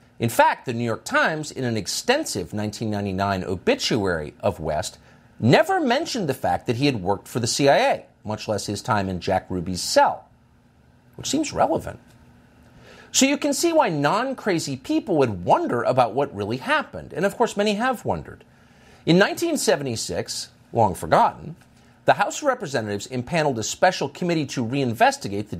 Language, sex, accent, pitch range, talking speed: English, male, American, 110-175 Hz, 160 wpm